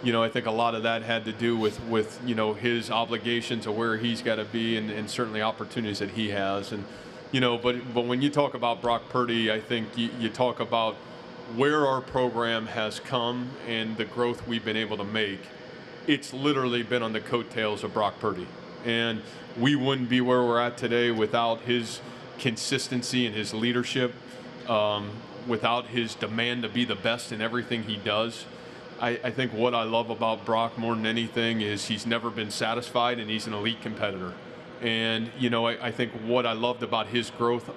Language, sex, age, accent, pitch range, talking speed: English, male, 30-49, American, 115-125 Hz, 200 wpm